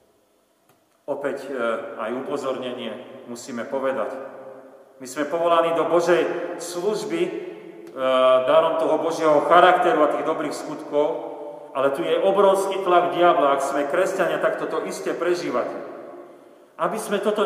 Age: 40-59